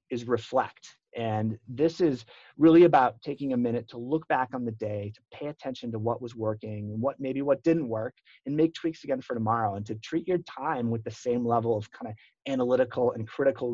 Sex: male